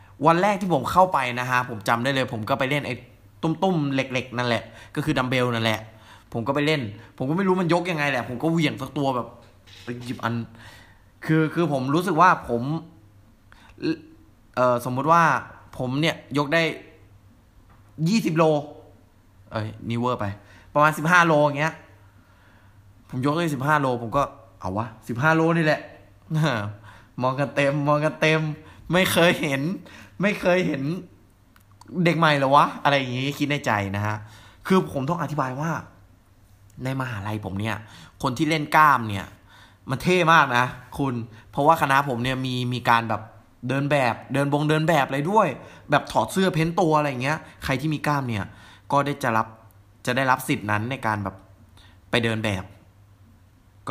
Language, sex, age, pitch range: Thai, male, 20-39, 105-150 Hz